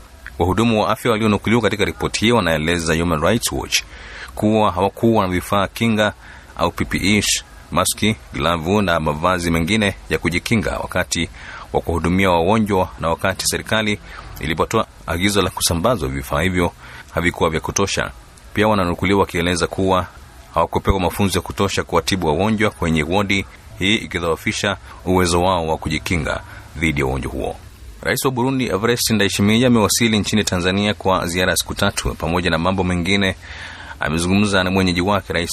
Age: 30-49